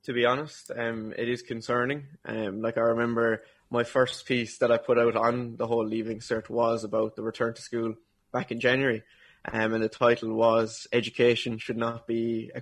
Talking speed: 200 wpm